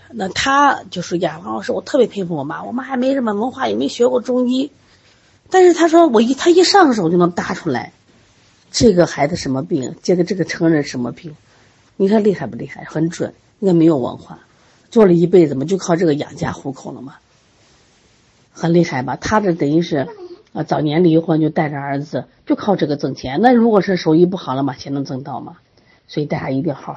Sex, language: female, Chinese